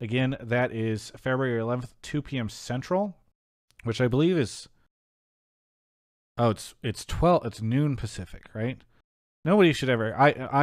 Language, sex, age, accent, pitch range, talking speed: English, male, 30-49, American, 100-130 Hz, 135 wpm